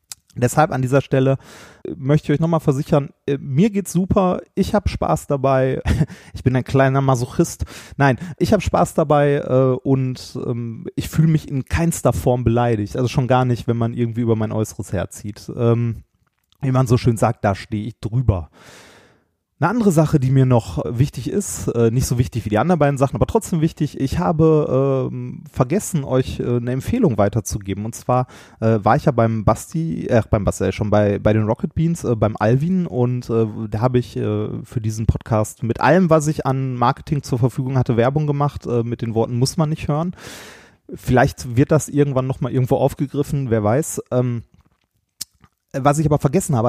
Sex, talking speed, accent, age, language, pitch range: male, 190 wpm, German, 30-49, German, 115-145 Hz